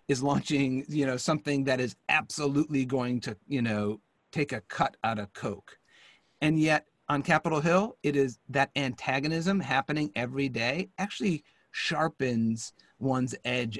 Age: 40-59